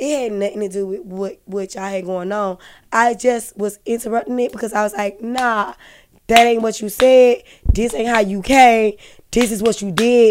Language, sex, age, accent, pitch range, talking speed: English, female, 20-39, American, 205-255 Hz, 215 wpm